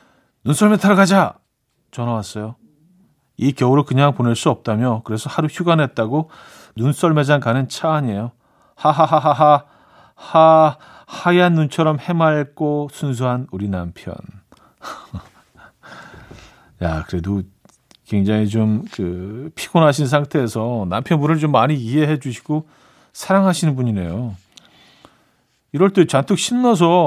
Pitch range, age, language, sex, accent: 115-160 Hz, 40-59, Korean, male, native